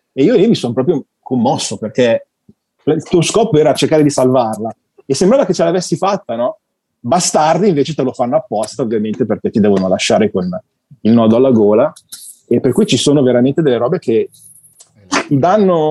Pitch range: 120-150 Hz